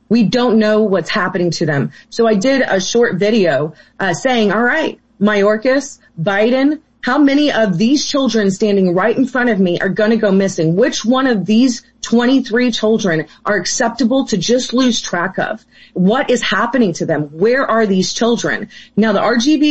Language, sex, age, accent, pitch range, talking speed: English, female, 30-49, American, 185-235 Hz, 185 wpm